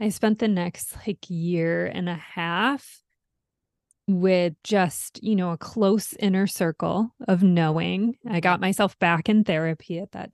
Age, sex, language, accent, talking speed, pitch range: 20-39, female, English, American, 155 wpm, 180-210 Hz